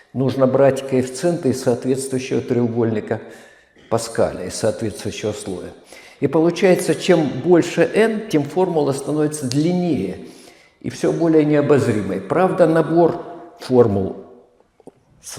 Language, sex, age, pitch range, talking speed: Russian, male, 50-69, 120-170 Hz, 105 wpm